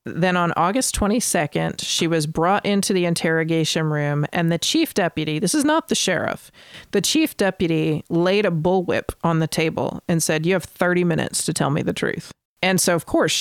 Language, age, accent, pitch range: English, 40-59, American, 150-180 Hz